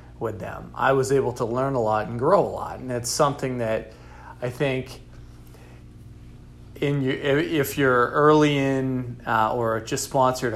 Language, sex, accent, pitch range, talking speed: English, male, American, 110-130 Hz, 165 wpm